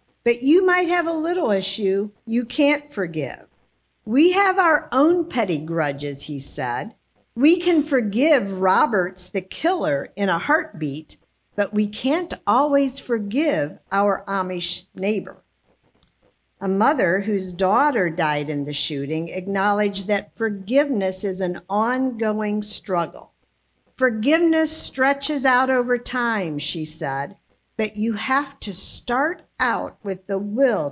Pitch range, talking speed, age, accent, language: 185-275 Hz, 130 wpm, 50-69, American, English